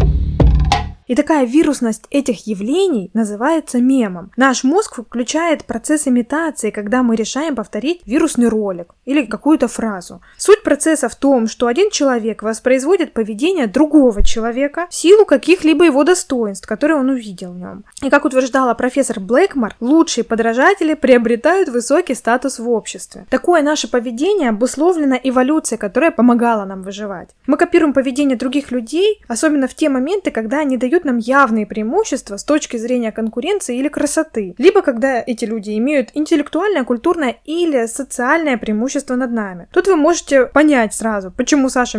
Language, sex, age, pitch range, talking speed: Russian, female, 20-39, 230-300 Hz, 145 wpm